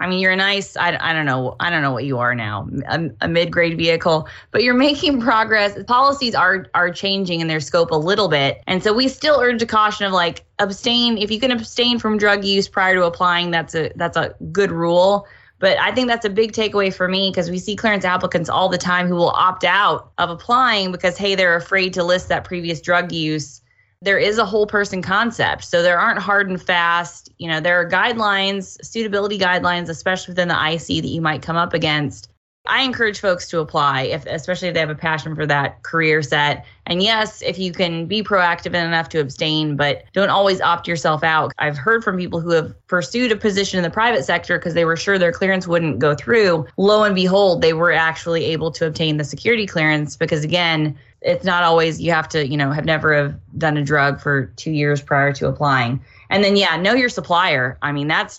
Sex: female